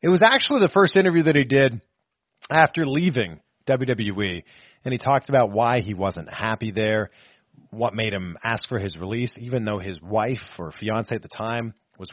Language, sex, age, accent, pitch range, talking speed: English, male, 40-59, American, 110-160 Hz, 190 wpm